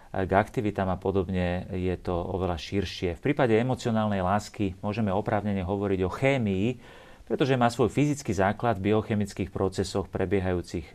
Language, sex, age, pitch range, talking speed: Slovak, male, 40-59, 95-115 Hz, 140 wpm